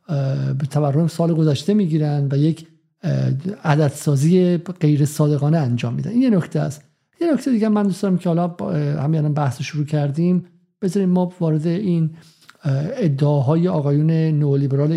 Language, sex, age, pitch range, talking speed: Persian, male, 50-69, 145-175 Hz, 135 wpm